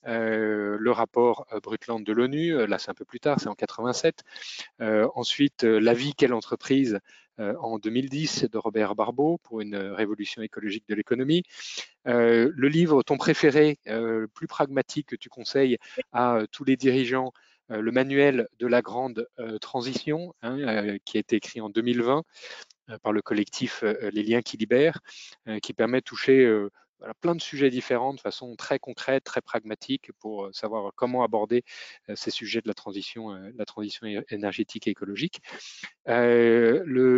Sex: male